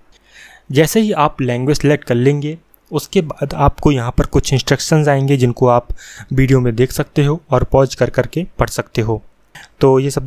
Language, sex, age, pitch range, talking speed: Hindi, male, 20-39, 130-150 Hz, 185 wpm